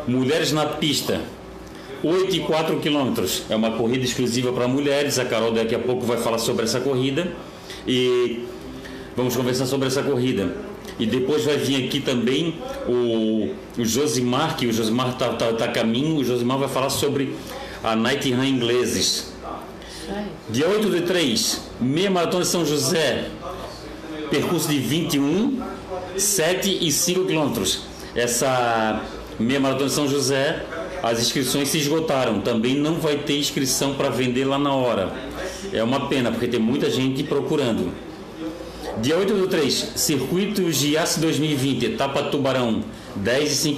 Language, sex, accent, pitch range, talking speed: Portuguese, male, Brazilian, 125-155 Hz, 150 wpm